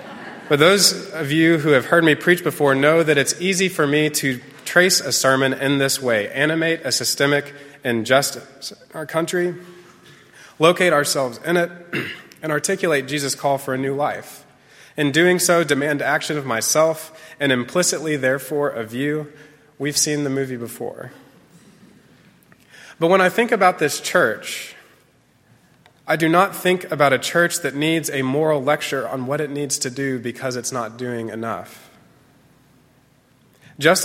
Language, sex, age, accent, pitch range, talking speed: English, male, 30-49, American, 140-170 Hz, 160 wpm